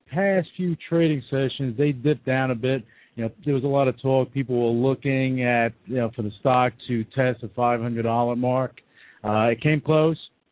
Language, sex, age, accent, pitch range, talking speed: English, male, 50-69, American, 115-140 Hz, 200 wpm